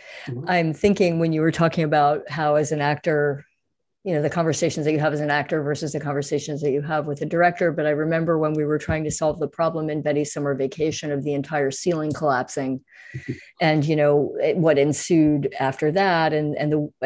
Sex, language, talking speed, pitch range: female, English, 210 wpm, 150-175 Hz